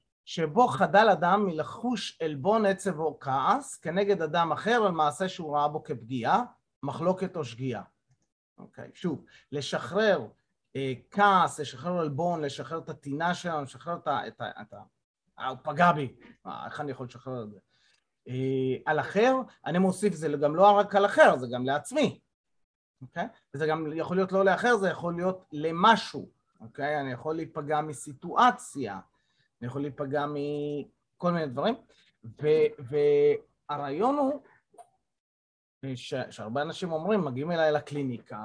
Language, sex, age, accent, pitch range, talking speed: Hebrew, male, 30-49, native, 135-185 Hz, 145 wpm